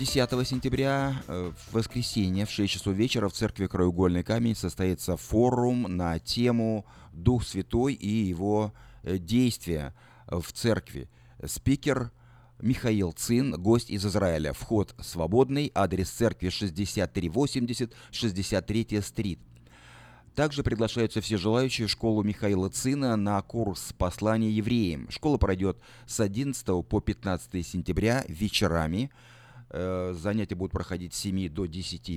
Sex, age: male, 30-49